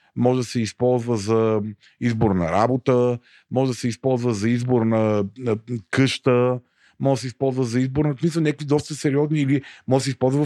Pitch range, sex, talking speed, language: 115-140 Hz, male, 200 wpm, Bulgarian